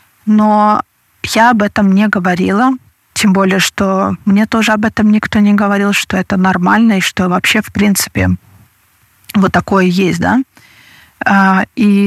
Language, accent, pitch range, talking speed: Russian, native, 180-215 Hz, 145 wpm